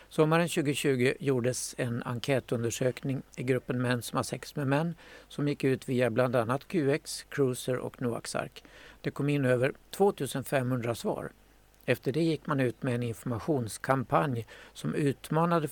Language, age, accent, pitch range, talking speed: Swedish, 60-79, native, 120-145 Hz, 150 wpm